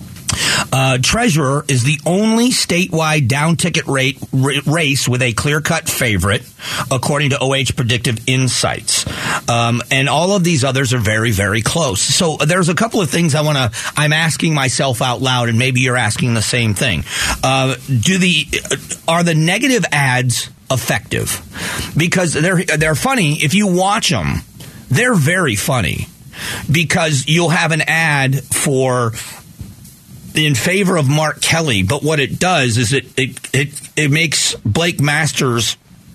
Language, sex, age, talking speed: English, male, 40-59, 150 wpm